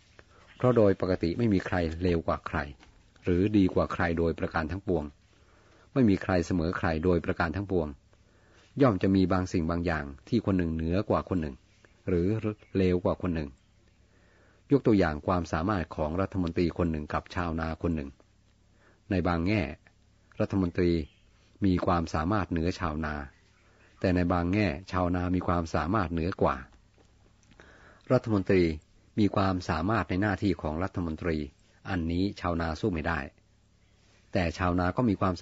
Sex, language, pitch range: male, Thai, 85-100 Hz